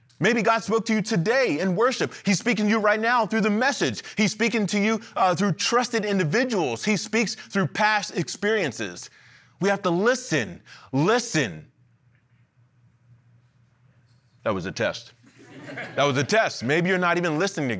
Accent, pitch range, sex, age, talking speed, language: American, 135-200 Hz, male, 30-49, 165 wpm, English